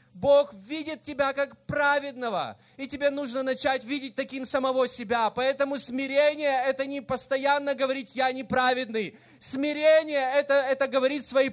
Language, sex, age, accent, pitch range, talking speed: Russian, male, 20-39, native, 215-270 Hz, 135 wpm